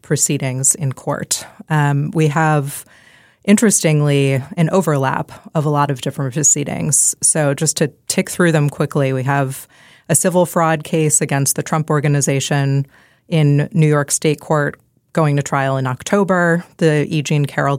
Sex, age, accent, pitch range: female, 20-39, American, 140-160 Hz